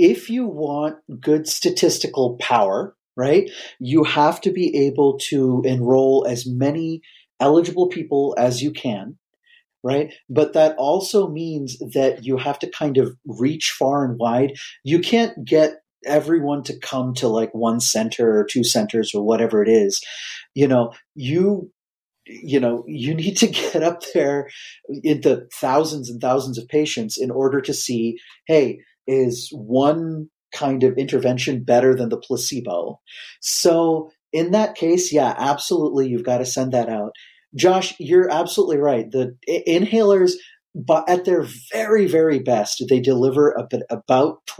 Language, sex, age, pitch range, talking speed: English, male, 40-59, 125-165 Hz, 155 wpm